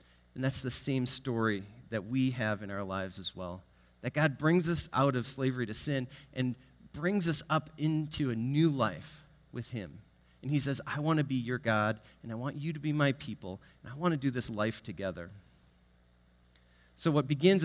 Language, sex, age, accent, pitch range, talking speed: English, male, 30-49, American, 105-150 Hz, 205 wpm